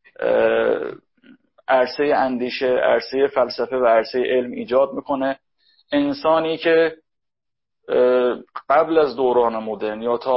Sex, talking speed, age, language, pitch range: male, 100 wpm, 30-49, Persian, 125-160 Hz